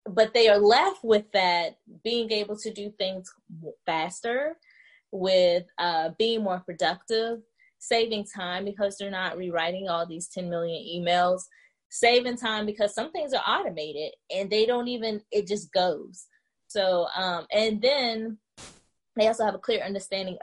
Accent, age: American, 20-39